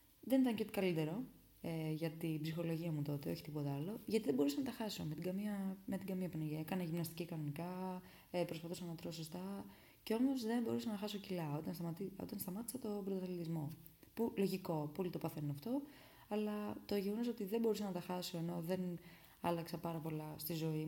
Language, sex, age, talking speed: Greek, female, 20-39, 195 wpm